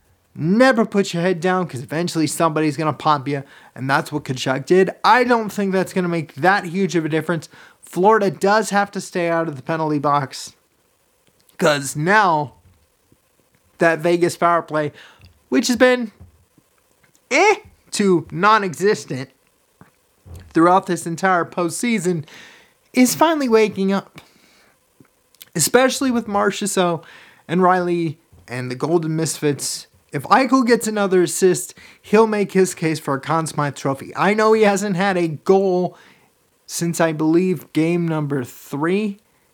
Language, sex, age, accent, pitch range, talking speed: English, male, 30-49, American, 155-200 Hz, 145 wpm